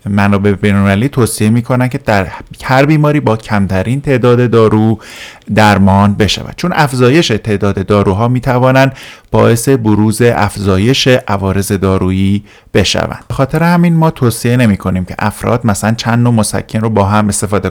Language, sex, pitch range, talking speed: Persian, male, 100-120 Hz, 140 wpm